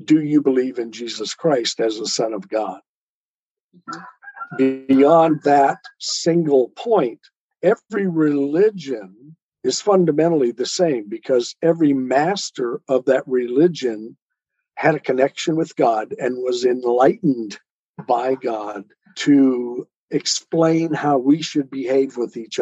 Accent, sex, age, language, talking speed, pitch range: American, male, 50-69, English, 120 wpm, 125-165 Hz